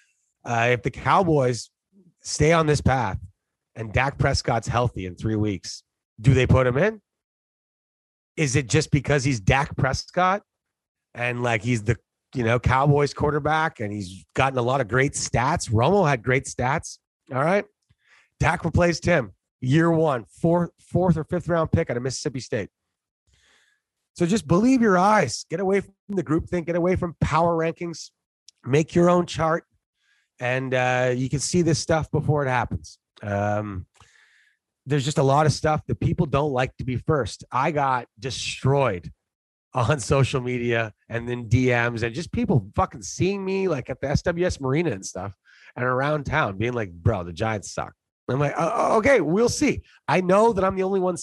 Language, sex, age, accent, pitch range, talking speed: English, male, 30-49, American, 120-160 Hz, 175 wpm